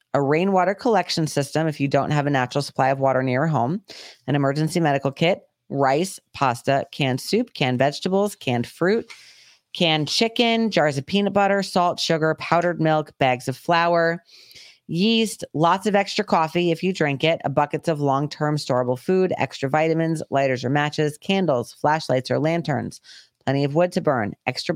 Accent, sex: American, female